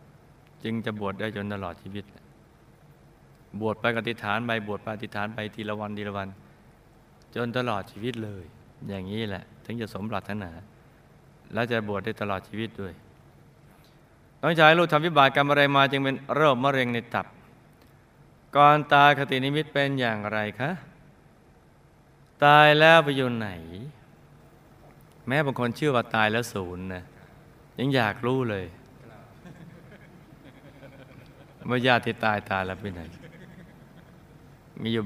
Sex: male